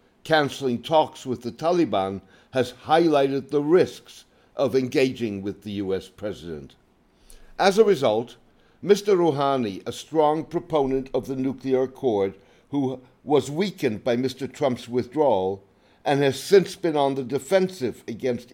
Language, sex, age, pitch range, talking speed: English, male, 60-79, 115-150 Hz, 135 wpm